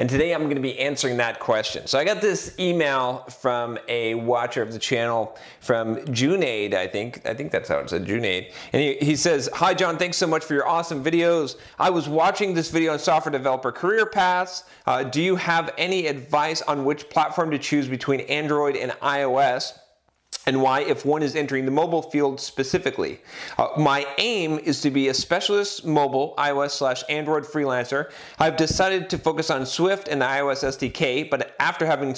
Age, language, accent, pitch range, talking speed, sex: 40-59, English, American, 135-170 Hz, 195 wpm, male